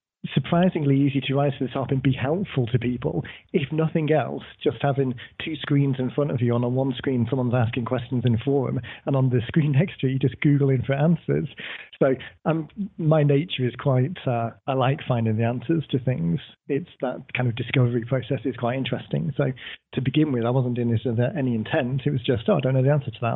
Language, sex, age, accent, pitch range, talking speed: English, male, 40-59, British, 120-140 Hz, 230 wpm